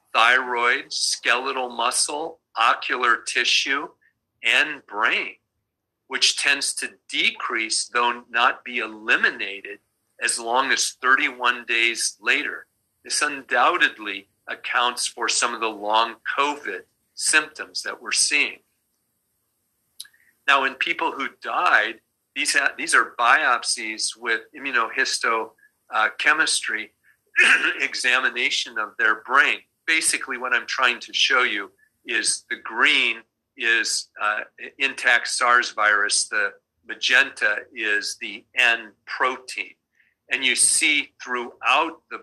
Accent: American